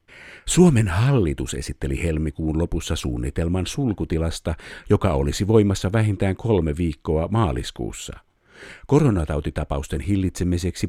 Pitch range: 80-100 Hz